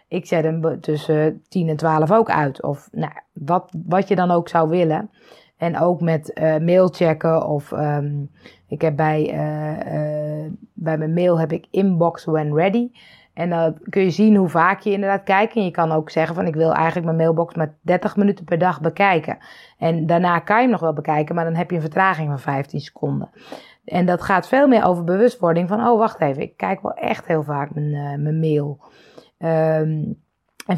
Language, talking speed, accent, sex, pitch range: Dutch, 200 wpm, Dutch, female, 155-205 Hz